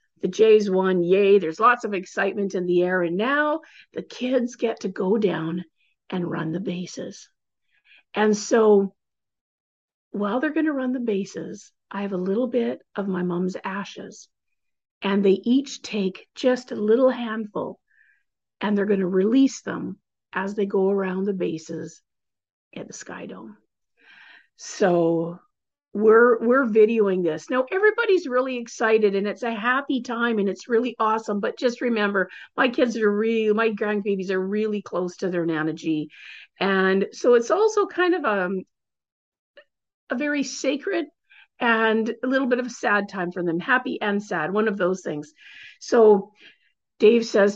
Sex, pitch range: female, 190-245 Hz